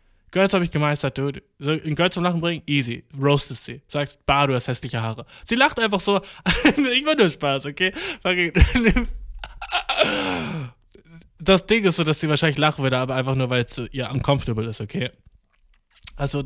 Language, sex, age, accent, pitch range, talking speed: German, male, 20-39, German, 120-160 Hz, 175 wpm